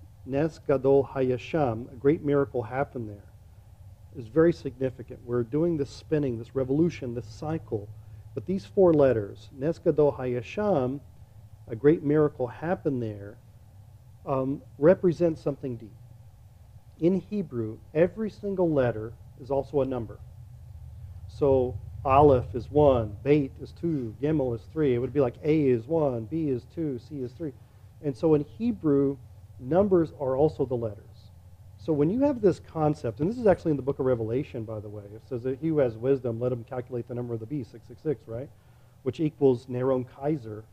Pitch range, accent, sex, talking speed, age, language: 115-145 Hz, American, male, 160 wpm, 40-59, English